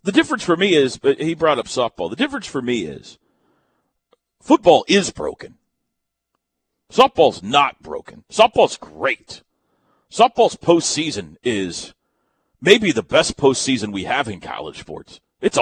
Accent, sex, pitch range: American, male, 115-185 Hz